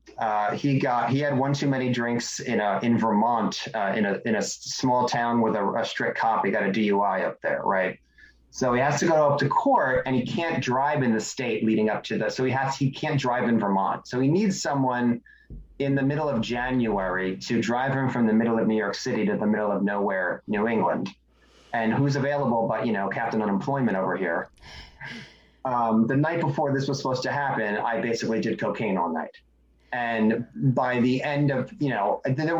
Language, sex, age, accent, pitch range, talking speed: English, male, 30-49, American, 110-135 Hz, 215 wpm